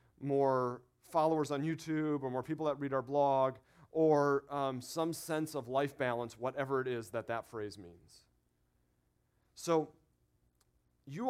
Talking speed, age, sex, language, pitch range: 145 wpm, 40-59, male, English, 110-150 Hz